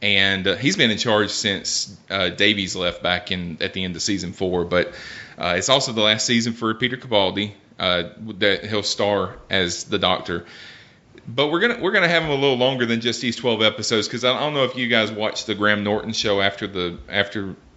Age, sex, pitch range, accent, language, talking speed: 30-49, male, 100-125 Hz, American, English, 220 wpm